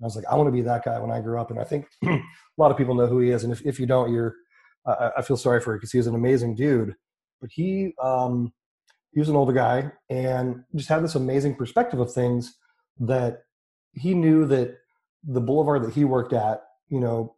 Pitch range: 120-140 Hz